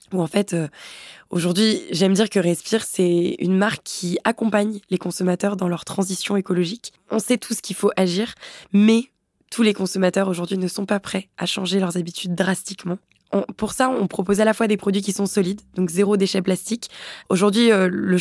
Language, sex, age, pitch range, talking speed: French, female, 20-39, 185-215 Hz, 200 wpm